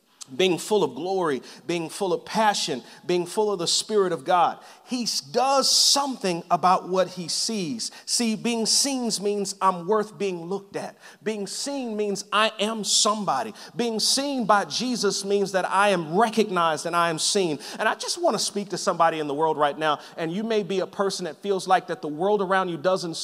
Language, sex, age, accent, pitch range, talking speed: English, male, 40-59, American, 180-220 Hz, 200 wpm